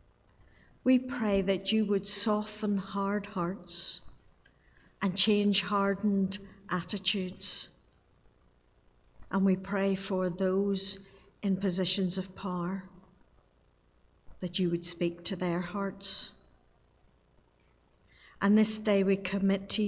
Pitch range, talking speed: 175-205 Hz, 105 wpm